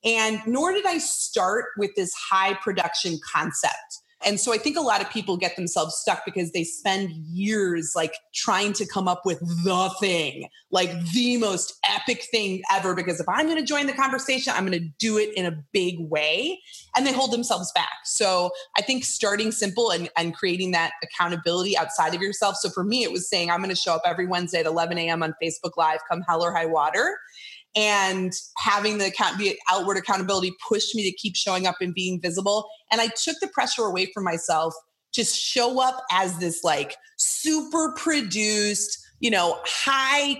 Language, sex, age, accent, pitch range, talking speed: English, female, 20-39, American, 175-230 Hz, 190 wpm